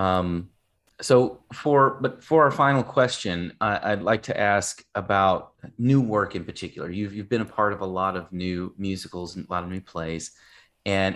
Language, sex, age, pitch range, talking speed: English, male, 30-49, 95-125 Hz, 195 wpm